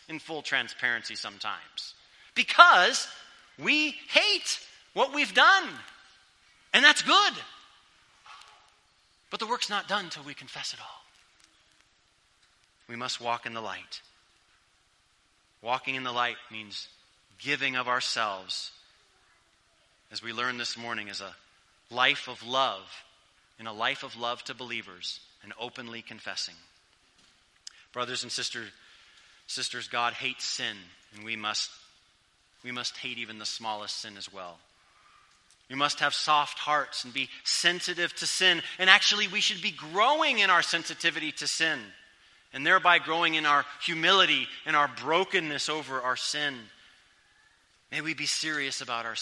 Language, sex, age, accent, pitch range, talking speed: English, male, 30-49, American, 120-175 Hz, 140 wpm